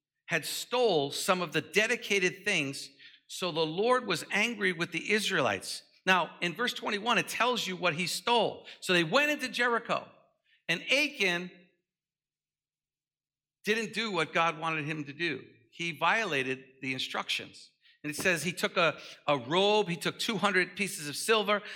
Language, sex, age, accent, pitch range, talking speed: English, male, 50-69, American, 140-185 Hz, 160 wpm